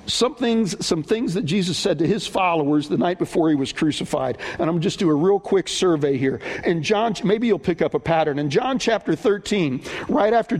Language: English